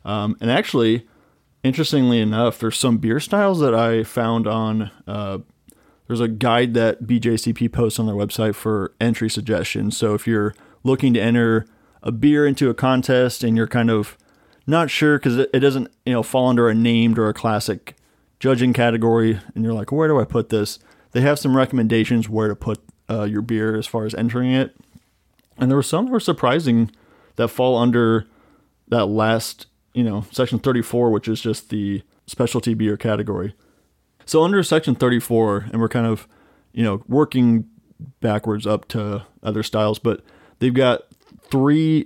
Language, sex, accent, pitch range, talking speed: English, male, American, 110-125 Hz, 175 wpm